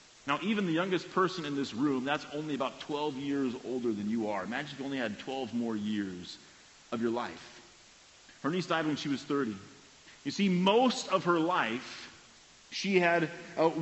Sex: male